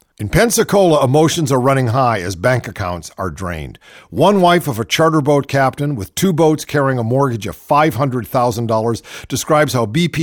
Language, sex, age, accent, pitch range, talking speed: English, male, 50-69, American, 120-185 Hz, 170 wpm